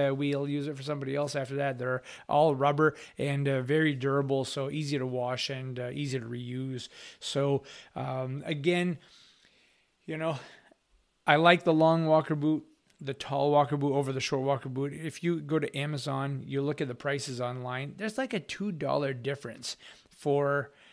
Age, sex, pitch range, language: 30-49, male, 135-150 Hz, English